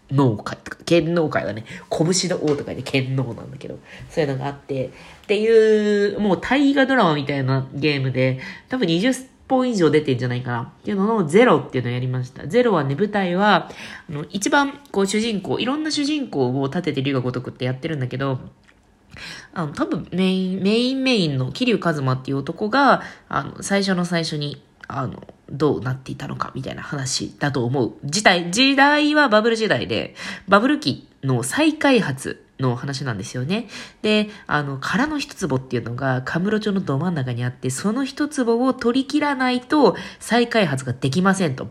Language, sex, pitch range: Japanese, female, 135-210 Hz